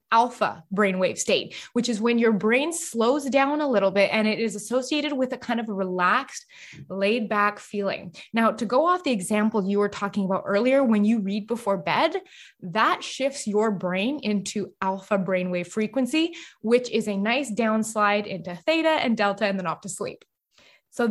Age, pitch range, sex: 20-39, 205-275 Hz, female